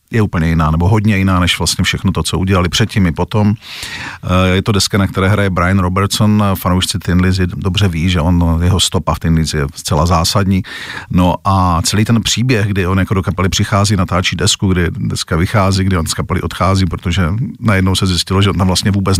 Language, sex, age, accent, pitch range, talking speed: Czech, male, 50-69, native, 85-100 Hz, 210 wpm